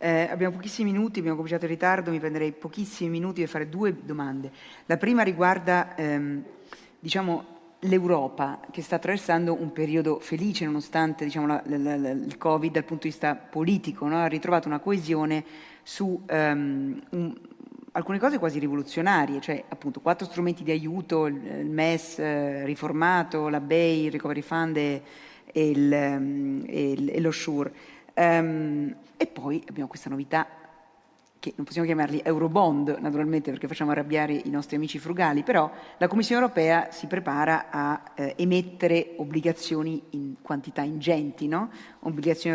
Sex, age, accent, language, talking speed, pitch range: female, 40-59, native, Italian, 140 wpm, 150-175 Hz